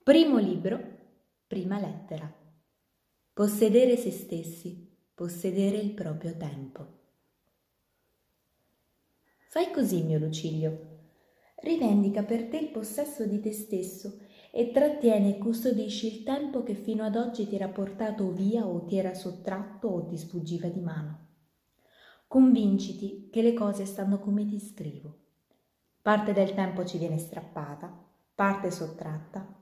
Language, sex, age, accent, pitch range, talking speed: Italian, female, 20-39, native, 180-230 Hz, 125 wpm